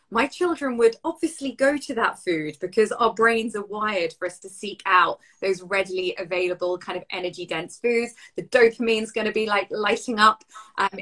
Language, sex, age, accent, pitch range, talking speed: English, female, 20-39, British, 175-225 Hz, 195 wpm